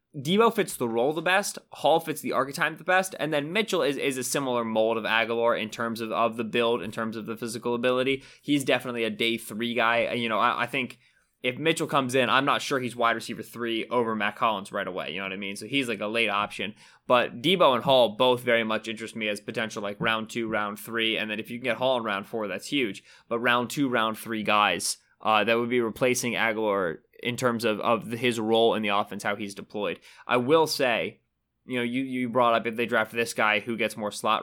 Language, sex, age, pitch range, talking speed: English, male, 20-39, 110-135 Hz, 245 wpm